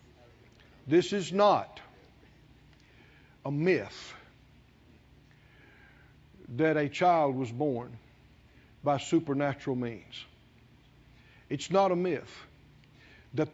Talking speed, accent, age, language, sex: 80 wpm, American, 60-79, English, male